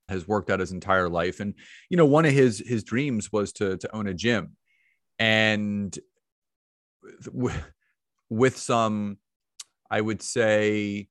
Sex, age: male, 30-49